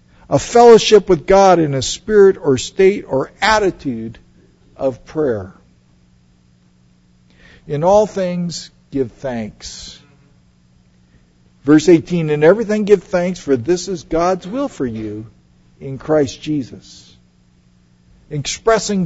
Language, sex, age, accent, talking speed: English, male, 50-69, American, 110 wpm